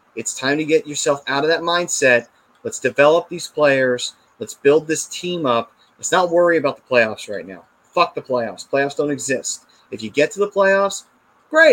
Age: 30-49